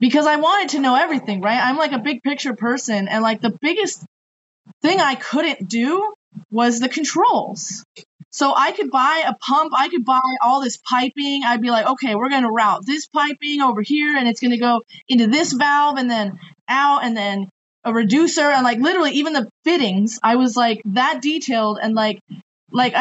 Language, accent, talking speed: English, American, 200 wpm